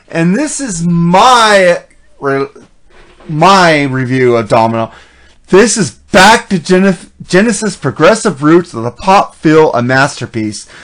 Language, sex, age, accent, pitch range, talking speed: English, male, 30-49, American, 135-180 Hz, 120 wpm